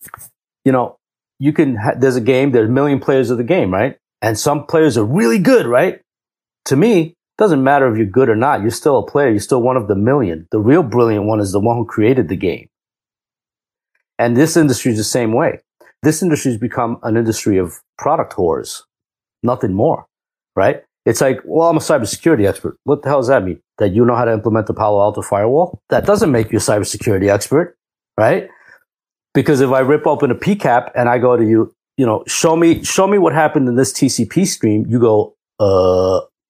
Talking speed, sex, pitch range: 215 wpm, male, 110-145 Hz